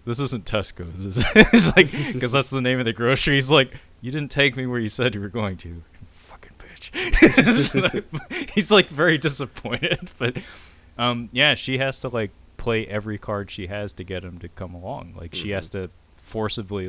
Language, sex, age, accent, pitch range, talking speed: English, male, 30-49, American, 85-110 Hz, 190 wpm